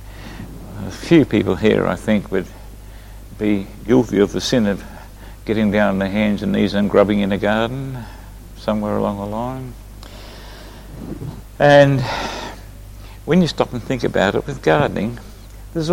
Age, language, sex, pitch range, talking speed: 60-79, English, male, 100-110 Hz, 150 wpm